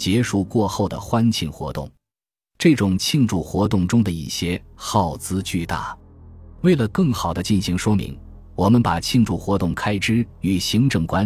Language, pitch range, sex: Chinese, 85-110 Hz, male